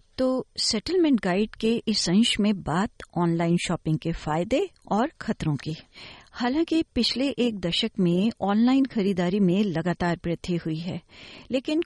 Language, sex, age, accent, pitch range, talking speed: Hindi, female, 50-69, native, 180-240 Hz, 140 wpm